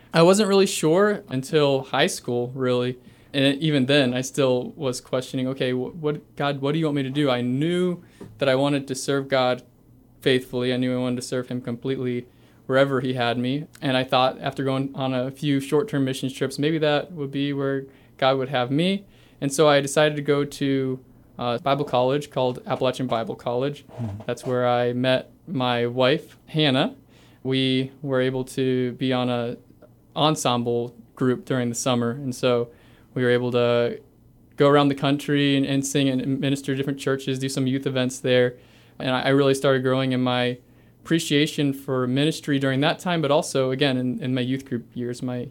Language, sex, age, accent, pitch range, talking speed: English, male, 20-39, American, 125-145 Hz, 195 wpm